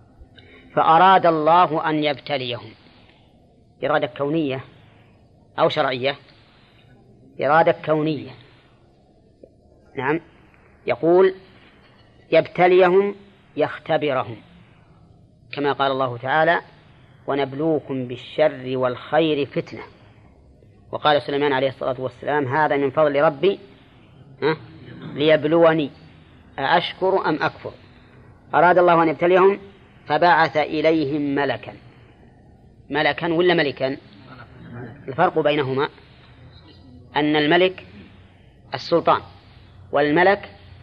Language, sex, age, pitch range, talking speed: Arabic, female, 30-49, 120-155 Hz, 75 wpm